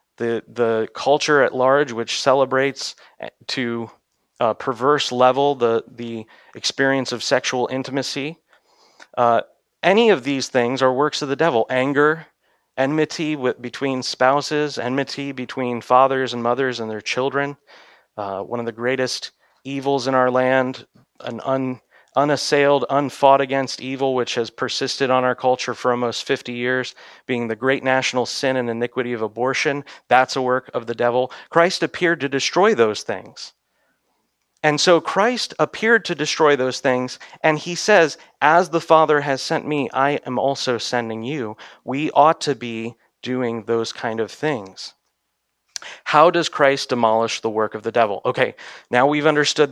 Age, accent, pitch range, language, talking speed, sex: 30-49, American, 120-145 Hz, English, 155 wpm, male